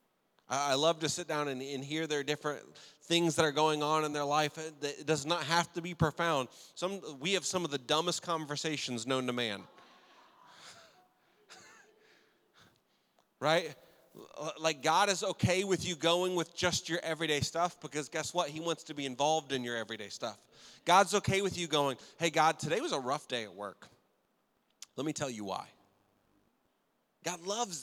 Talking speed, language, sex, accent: 175 wpm, English, male, American